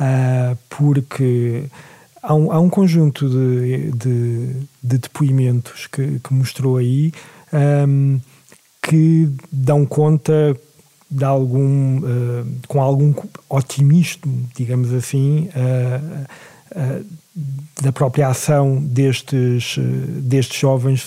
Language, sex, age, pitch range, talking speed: Portuguese, male, 40-59, 130-155 Hz, 105 wpm